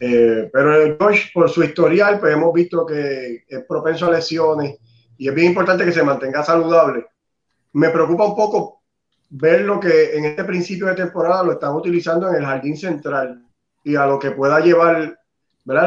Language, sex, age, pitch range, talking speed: Spanish, male, 30-49, 145-170 Hz, 185 wpm